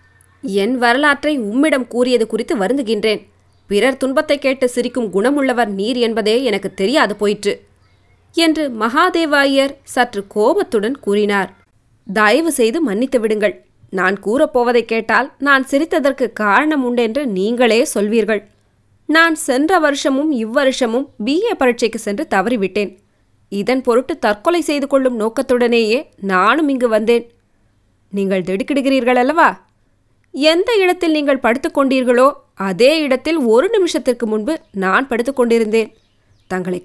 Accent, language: native, Tamil